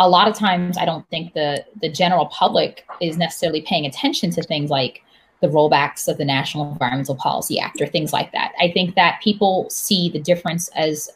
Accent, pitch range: American, 160-220 Hz